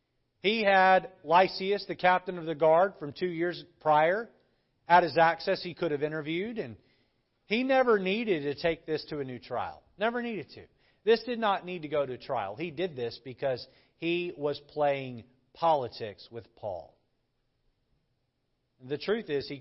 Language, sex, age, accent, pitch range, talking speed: English, male, 40-59, American, 145-200 Hz, 170 wpm